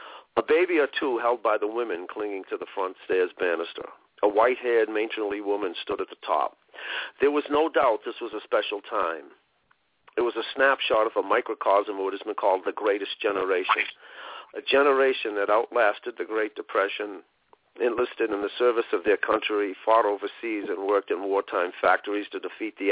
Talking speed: 185 wpm